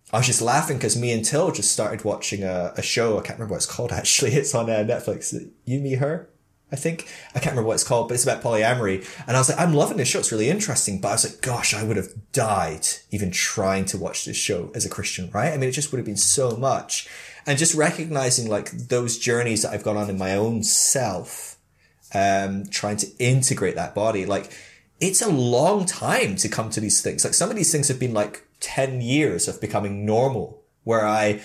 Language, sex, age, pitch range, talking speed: English, male, 20-39, 105-130 Hz, 235 wpm